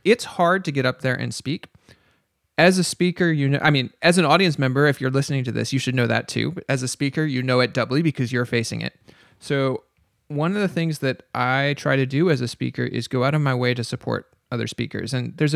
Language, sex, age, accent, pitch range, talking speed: English, male, 30-49, American, 130-165 Hz, 250 wpm